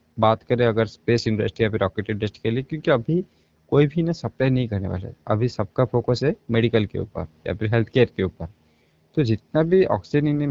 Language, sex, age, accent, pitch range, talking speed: Hindi, male, 20-39, native, 105-130 Hz, 225 wpm